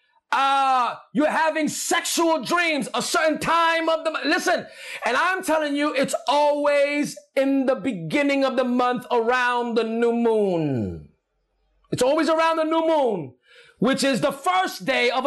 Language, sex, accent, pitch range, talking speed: English, male, American, 260-325 Hz, 160 wpm